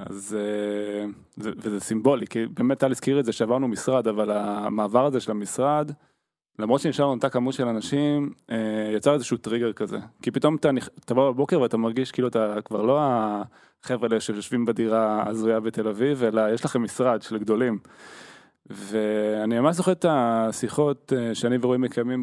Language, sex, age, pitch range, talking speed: Hebrew, male, 20-39, 110-140 Hz, 165 wpm